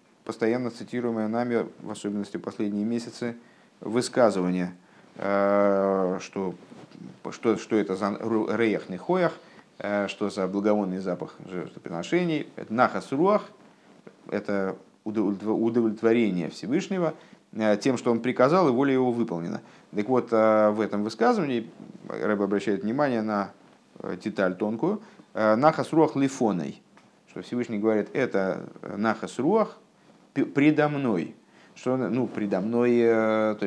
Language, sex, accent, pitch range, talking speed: Russian, male, native, 100-125 Hz, 105 wpm